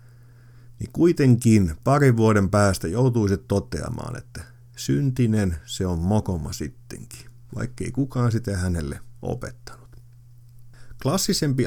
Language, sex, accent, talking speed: Finnish, male, native, 100 wpm